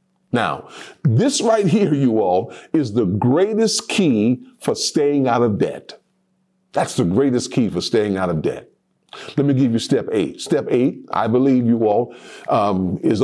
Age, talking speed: 50-69, 170 wpm